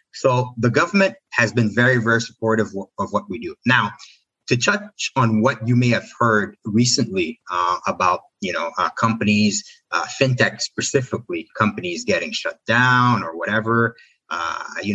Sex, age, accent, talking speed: male, 30-49, American, 155 wpm